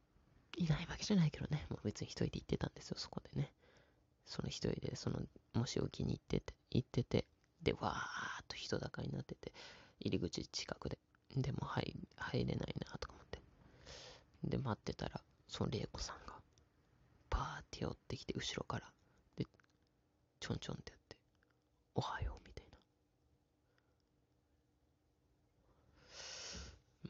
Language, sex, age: Japanese, female, 20-39